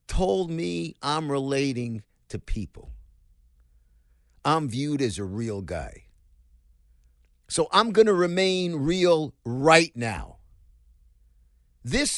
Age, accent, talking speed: 50-69, American, 105 wpm